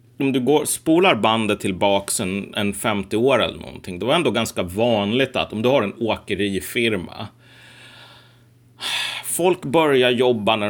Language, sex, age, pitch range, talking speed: Swedish, male, 30-49, 105-125 Hz, 155 wpm